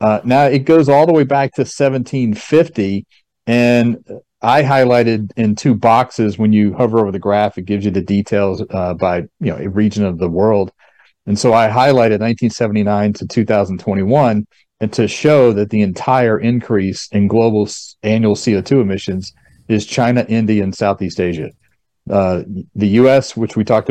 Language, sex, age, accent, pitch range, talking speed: English, male, 40-59, American, 100-130 Hz, 170 wpm